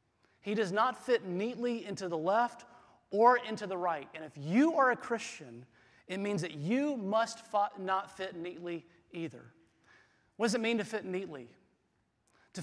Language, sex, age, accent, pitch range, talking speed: English, male, 30-49, American, 145-215 Hz, 165 wpm